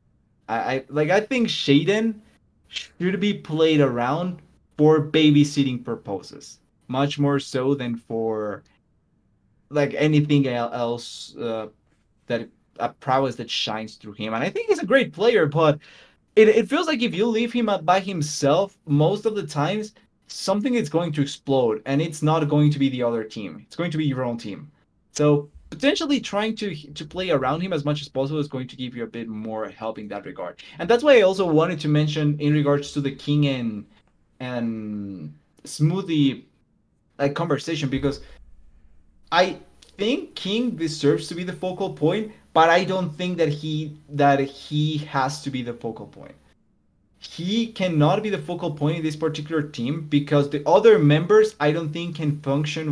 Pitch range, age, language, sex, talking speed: 135-175 Hz, 20-39, English, male, 175 wpm